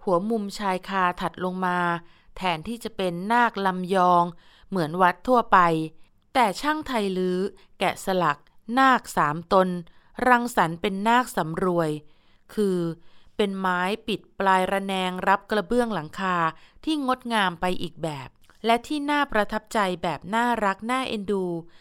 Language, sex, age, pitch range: Thai, female, 20-39, 175-225 Hz